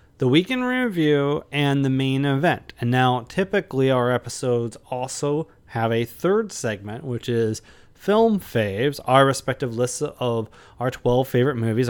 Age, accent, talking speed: 30-49, American, 145 wpm